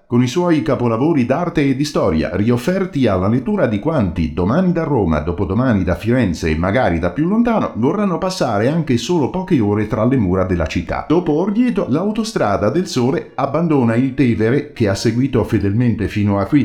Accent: native